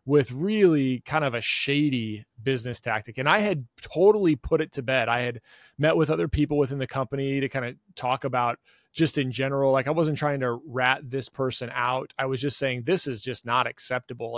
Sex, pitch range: male, 125-160 Hz